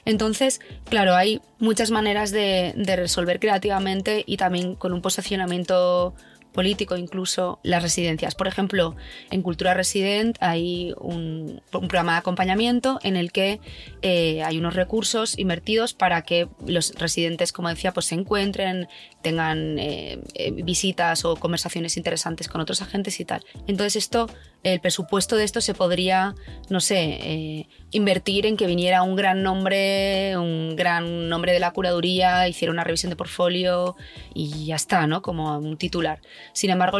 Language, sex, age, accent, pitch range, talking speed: Spanish, female, 20-39, Spanish, 170-195 Hz, 155 wpm